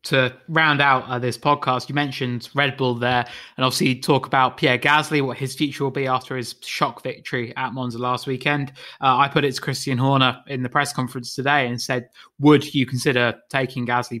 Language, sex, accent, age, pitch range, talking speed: English, male, British, 20-39, 125-145 Hz, 205 wpm